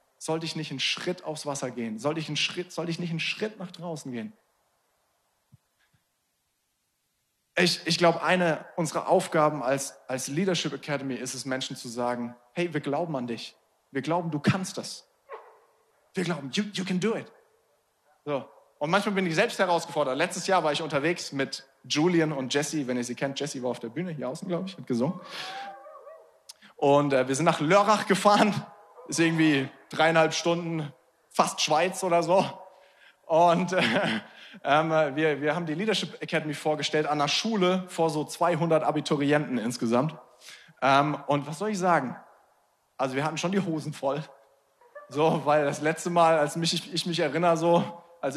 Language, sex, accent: German, male, German